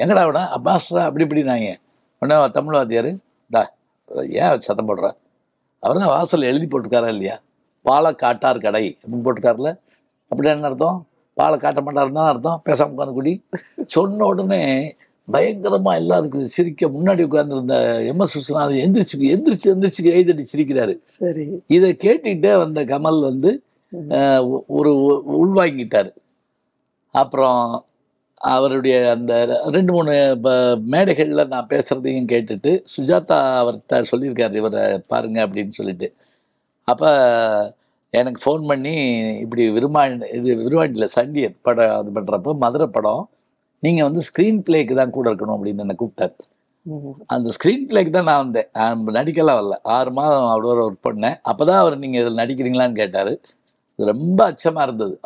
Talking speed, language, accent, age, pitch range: 125 wpm, Tamil, native, 60-79, 120-165 Hz